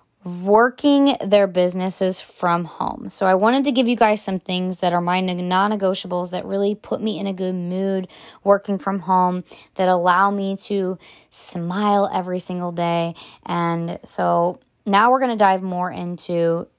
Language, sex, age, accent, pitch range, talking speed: English, female, 20-39, American, 170-205 Hz, 165 wpm